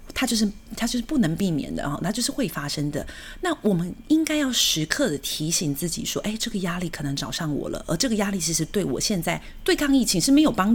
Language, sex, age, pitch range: Chinese, female, 30-49, 155-230 Hz